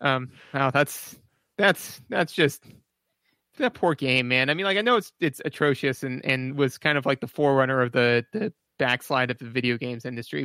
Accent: American